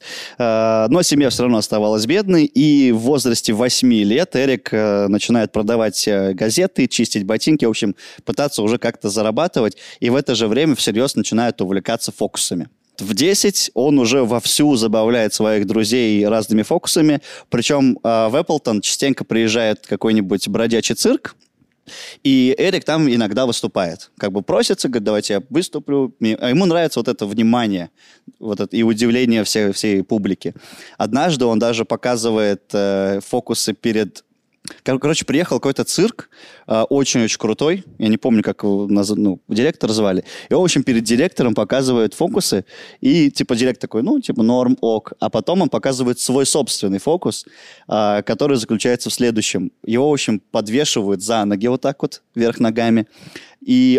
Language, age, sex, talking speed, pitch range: Russian, 20-39, male, 150 wpm, 110-135 Hz